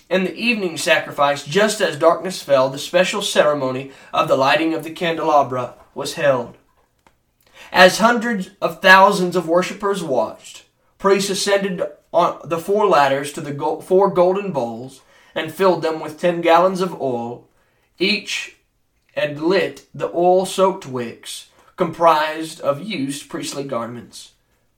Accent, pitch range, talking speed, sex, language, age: American, 140-195 Hz, 135 wpm, male, English, 20-39